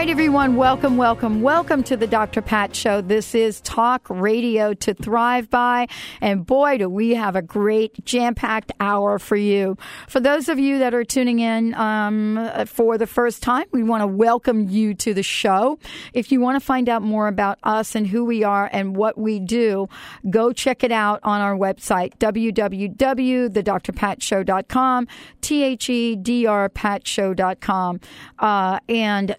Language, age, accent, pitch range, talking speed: English, 50-69, American, 200-240 Hz, 155 wpm